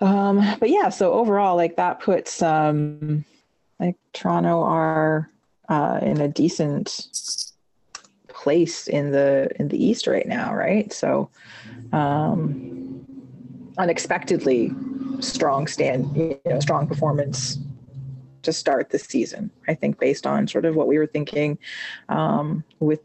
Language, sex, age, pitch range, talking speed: English, female, 30-49, 150-185 Hz, 130 wpm